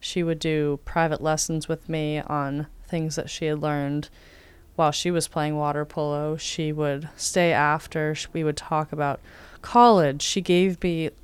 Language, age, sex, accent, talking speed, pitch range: English, 20-39, female, American, 165 wpm, 150-165 Hz